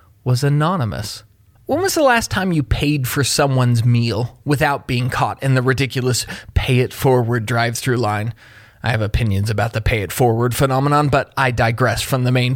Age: 30-49